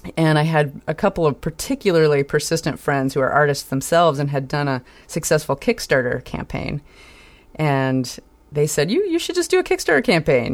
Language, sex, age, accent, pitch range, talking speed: English, female, 30-49, American, 135-170 Hz, 175 wpm